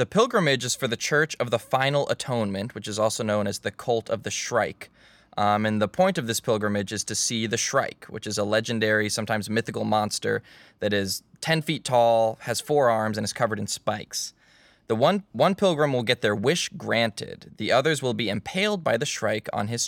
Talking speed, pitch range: 215 wpm, 110-130 Hz